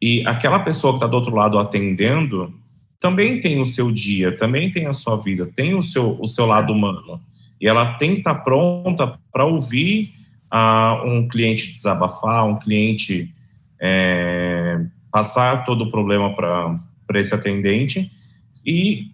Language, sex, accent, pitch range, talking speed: English, male, Brazilian, 110-150 Hz, 145 wpm